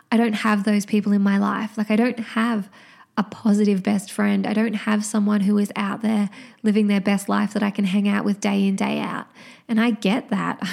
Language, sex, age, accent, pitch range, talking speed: English, female, 20-39, Australian, 205-235 Hz, 235 wpm